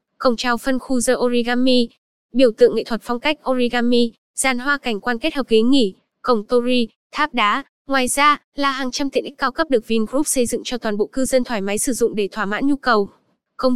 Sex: female